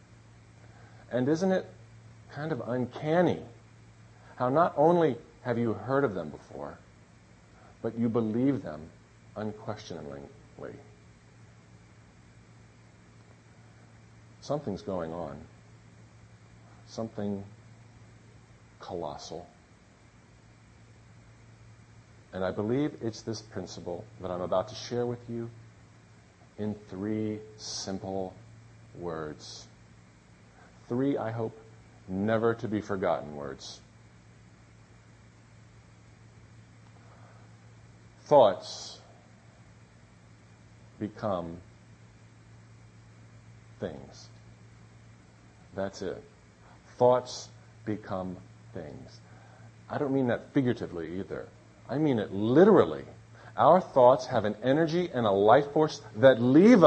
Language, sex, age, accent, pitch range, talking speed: English, male, 50-69, American, 105-115 Hz, 80 wpm